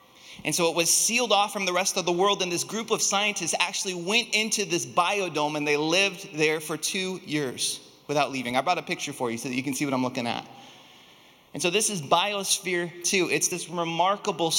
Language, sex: English, male